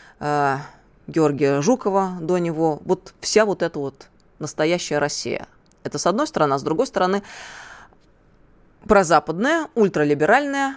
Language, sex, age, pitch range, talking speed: Russian, female, 20-39, 150-205 Hz, 115 wpm